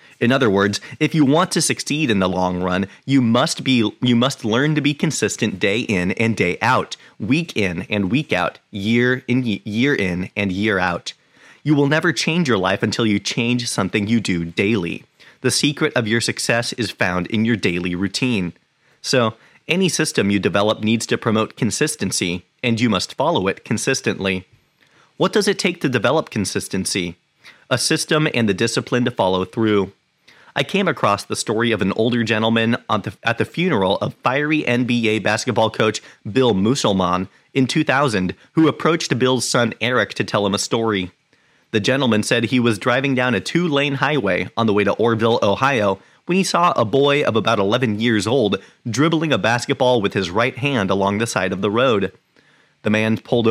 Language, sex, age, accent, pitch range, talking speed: English, male, 30-49, American, 100-140 Hz, 185 wpm